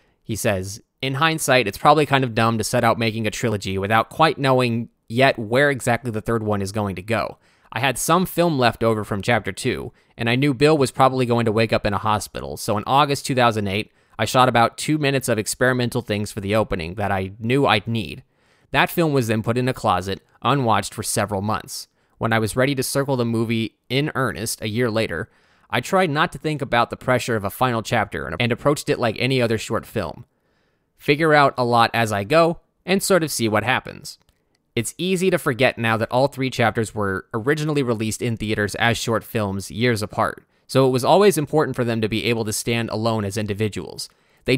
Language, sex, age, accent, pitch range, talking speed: English, male, 20-39, American, 110-135 Hz, 220 wpm